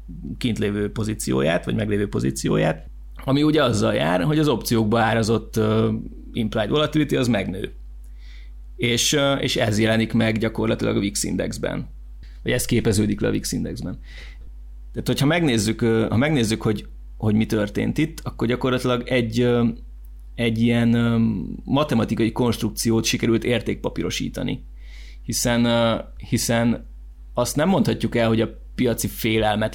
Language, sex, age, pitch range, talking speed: Hungarian, male, 30-49, 100-120 Hz, 125 wpm